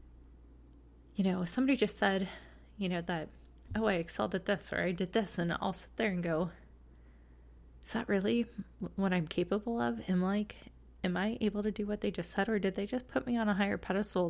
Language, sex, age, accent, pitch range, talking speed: English, female, 20-39, American, 170-210 Hz, 215 wpm